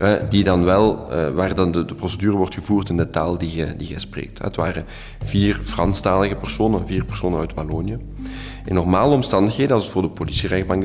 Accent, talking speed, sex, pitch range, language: Belgian, 190 wpm, male, 85-105 Hz, Dutch